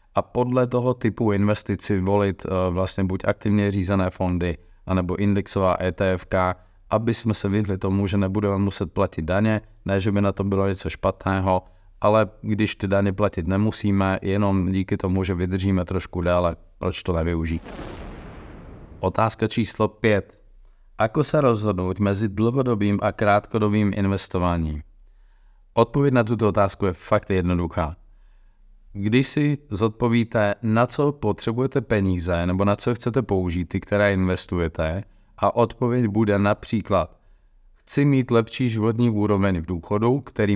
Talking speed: 135 wpm